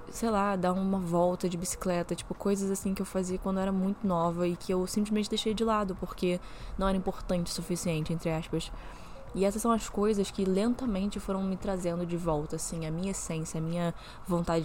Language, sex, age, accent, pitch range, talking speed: Portuguese, female, 20-39, Brazilian, 175-200 Hz, 210 wpm